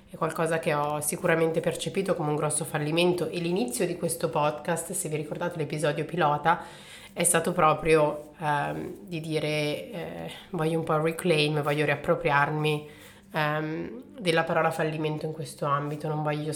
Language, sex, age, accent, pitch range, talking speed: Italian, female, 30-49, native, 150-170 Hz, 150 wpm